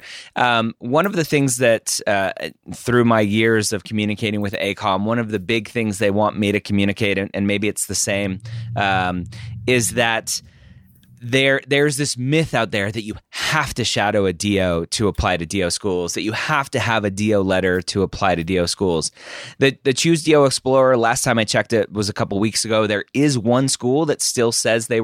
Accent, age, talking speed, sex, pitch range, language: American, 20-39, 210 wpm, male, 100-120 Hz, English